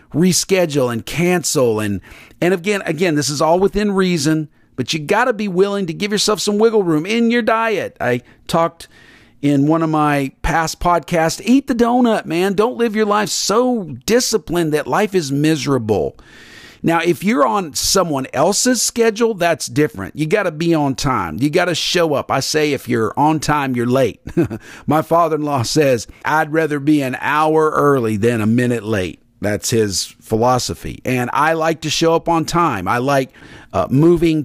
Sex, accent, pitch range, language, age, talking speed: male, American, 130-190 Hz, English, 50-69, 185 wpm